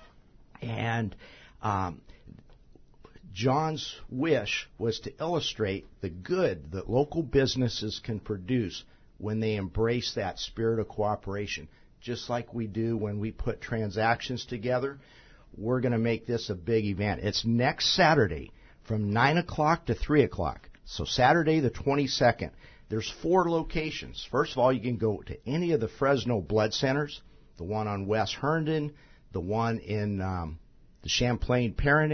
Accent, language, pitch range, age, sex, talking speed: American, English, 105-130 Hz, 50-69, male, 150 wpm